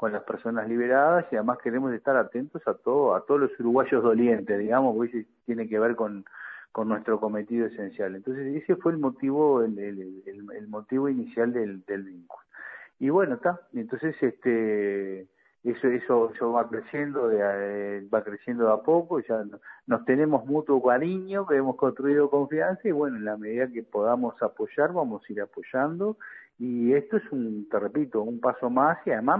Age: 50-69